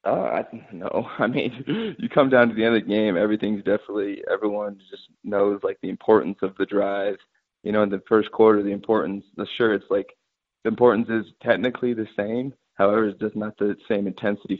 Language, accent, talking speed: English, American, 205 wpm